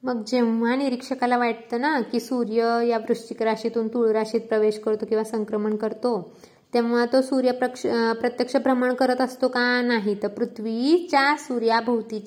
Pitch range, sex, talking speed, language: 210-250 Hz, female, 140 wpm, Marathi